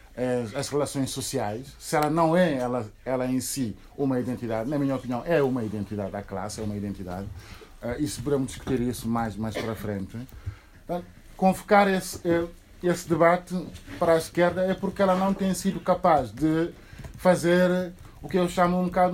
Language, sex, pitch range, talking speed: Portuguese, male, 125-180 Hz, 180 wpm